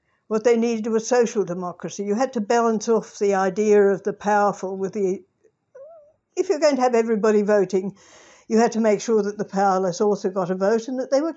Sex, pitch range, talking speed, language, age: female, 190-235 Hz, 215 wpm, English, 60-79